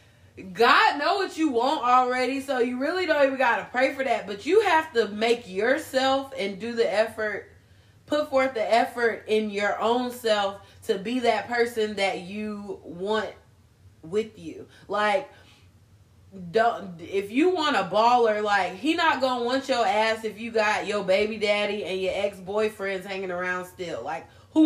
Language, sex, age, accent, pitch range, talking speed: English, female, 20-39, American, 185-260 Hz, 180 wpm